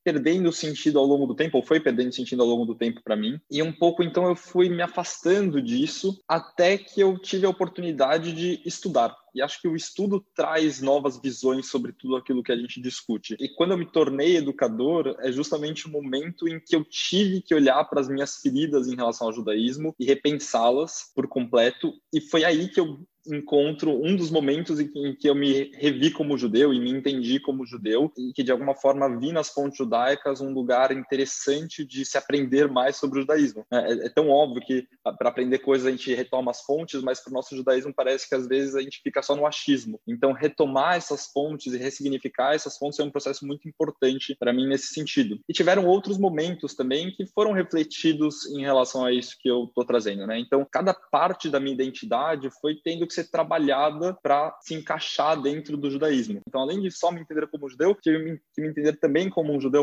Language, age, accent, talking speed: Portuguese, 20-39, Brazilian, 215 wpm